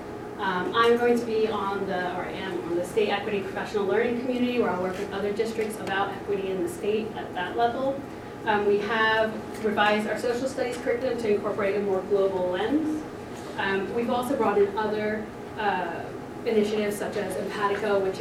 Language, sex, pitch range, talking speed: English, female, 195-235 Hz, 185 wpm